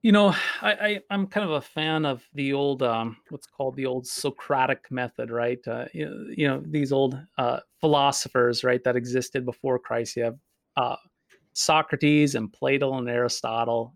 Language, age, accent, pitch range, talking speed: English, 30-49, American, 130-160 Hz, 175 wpm